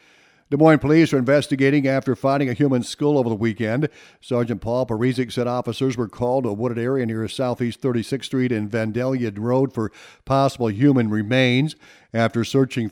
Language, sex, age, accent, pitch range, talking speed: English, male, 50-69, American, 110-135 Hz, 170 wpm